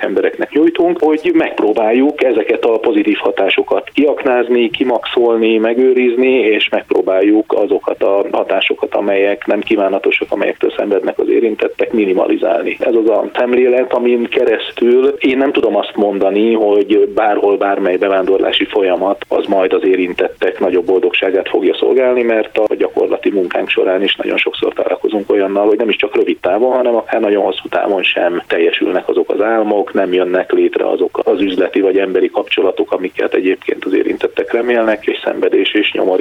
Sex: male